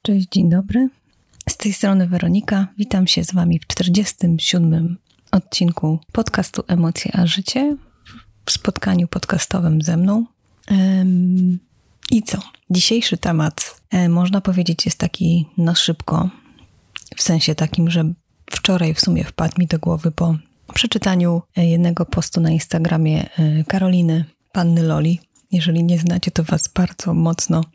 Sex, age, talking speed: female, 30-49, 130 wpm